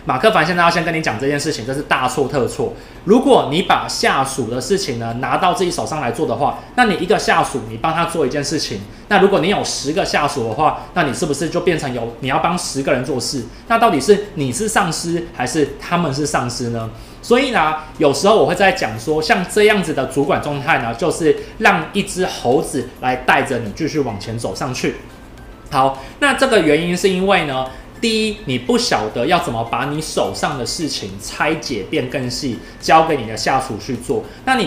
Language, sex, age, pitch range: Chinese, male, 20-39, 130-190 Hz